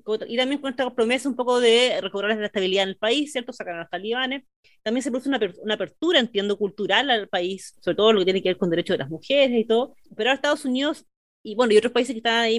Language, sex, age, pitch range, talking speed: Spanish, female, 30-49, 190-245 Hz, 265 wpm